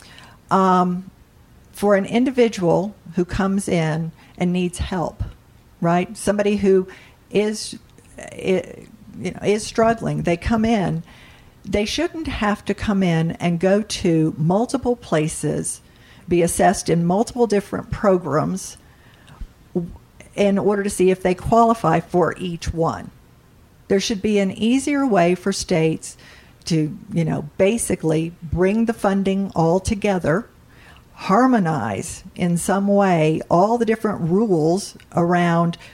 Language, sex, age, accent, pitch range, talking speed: English, female, 50-69, American, 170-210 Hz, 125 wpm